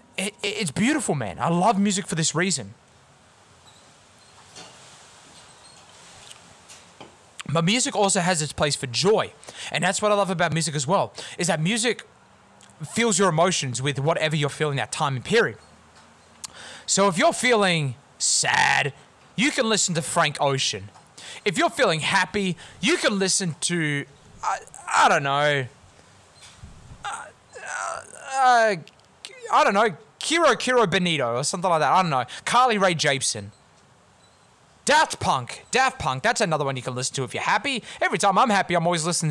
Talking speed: 155 wpm